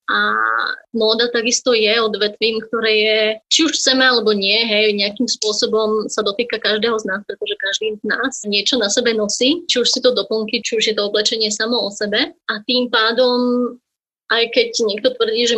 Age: 20-39